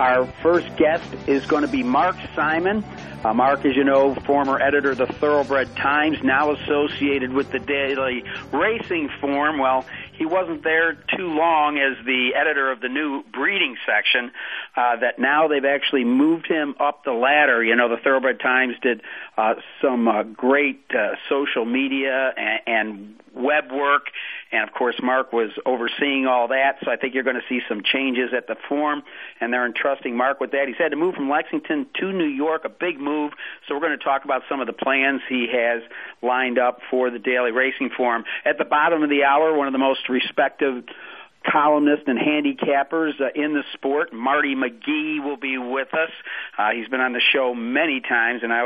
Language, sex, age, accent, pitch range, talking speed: English, male, 50-69, American, 125-155 Hz, 195 wpm